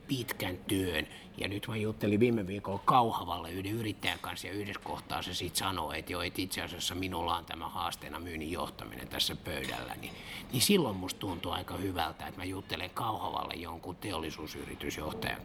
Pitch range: 90-115 Hz